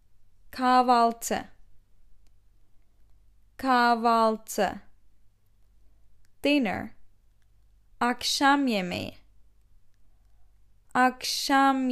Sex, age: female, 20-39